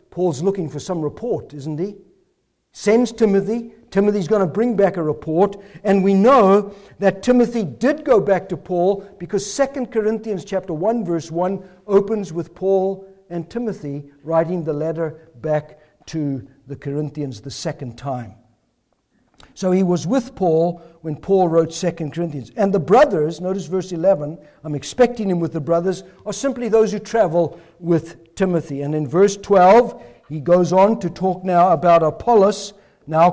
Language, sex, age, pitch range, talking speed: English, male, 60-79, 170-215 Hz, 165 wpm